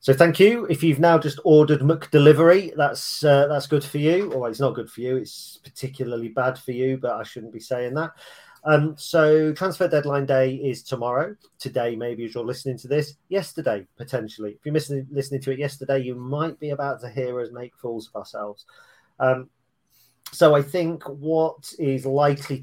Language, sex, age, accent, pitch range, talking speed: English, male, 40-59, British, 110-145 Hz, 195 wpm